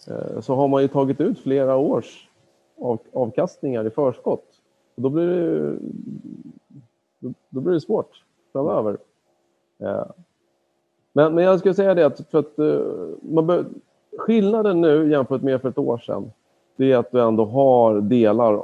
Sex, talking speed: male, 145 wpm